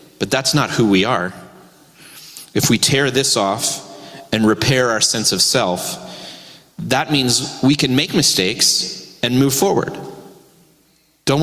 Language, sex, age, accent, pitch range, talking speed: English, male, 30-49, American, 115-155 Hz, 140 wpm